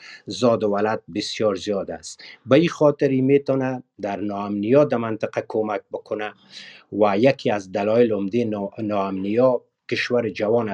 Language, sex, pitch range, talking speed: Persian, male, 100-120 Hz, 145 wpm